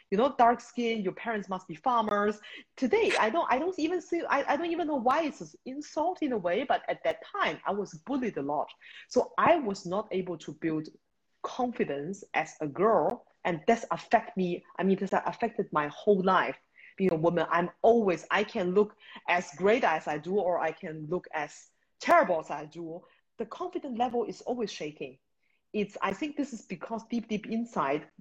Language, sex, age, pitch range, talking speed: English, female, 30-49, 155-215 Hz, 205 wpm